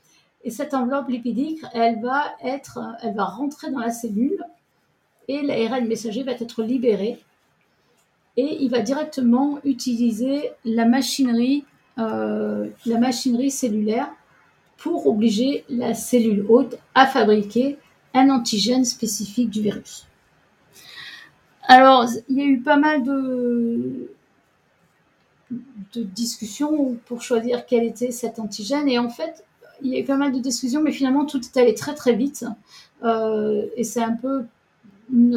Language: French